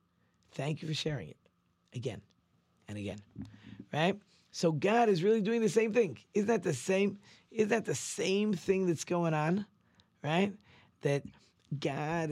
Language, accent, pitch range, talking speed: English, American, 120-165 Hz, 155 wpm